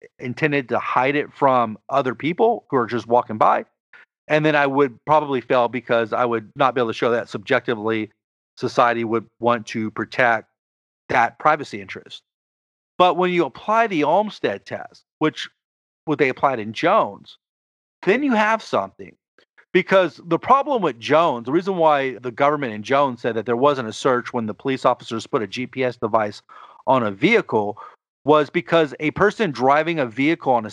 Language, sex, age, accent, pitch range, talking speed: English, male, 40-59, American, 115-160 Hz, 175 wpm